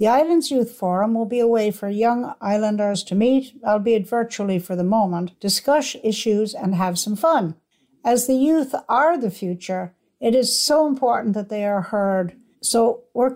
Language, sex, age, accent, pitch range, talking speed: English, female, 60-79, American, 195-245 Hz, 180 wpm